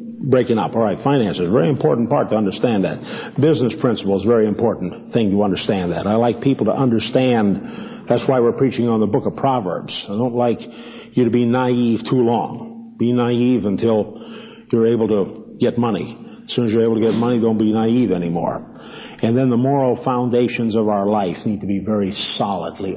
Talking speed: 200 wpm